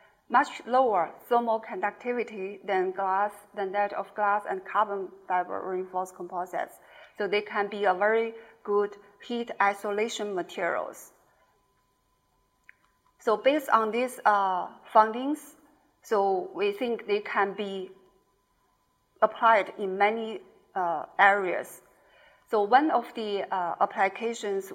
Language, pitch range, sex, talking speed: English, 195-225 Hz, female, 115 wpm